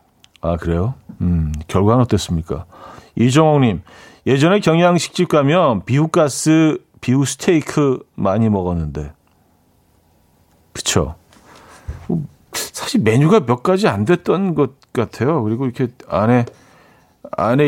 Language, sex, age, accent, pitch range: Korean, male, 40-59, native, 110-160 Hz